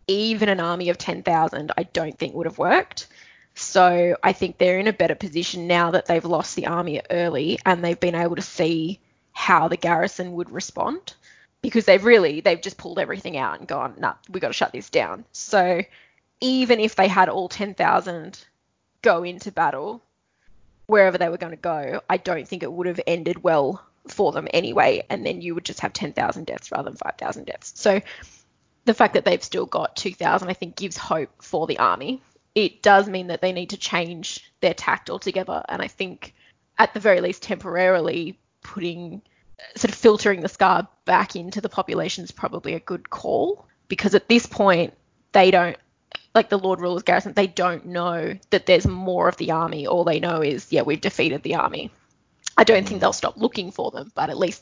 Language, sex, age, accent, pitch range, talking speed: English, female, 10-29, Australian, 170-195 Hz, 200 wpm